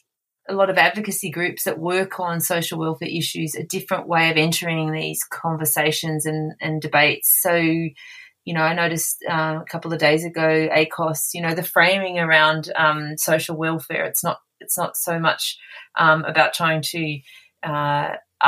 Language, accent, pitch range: English, Australian, 155-185 Hz